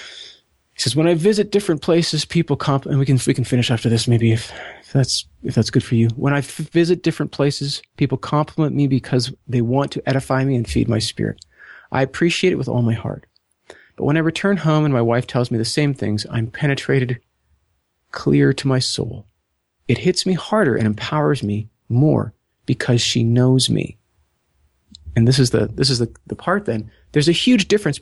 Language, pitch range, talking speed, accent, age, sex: English, 110-145 Hz, 205 wpm, American, 30-49, male